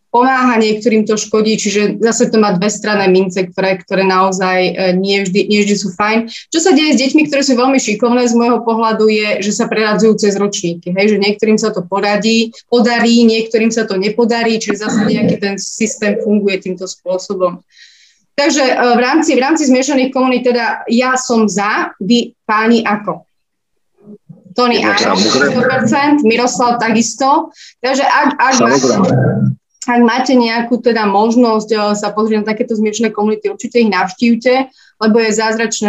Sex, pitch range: female, 195-235 Hz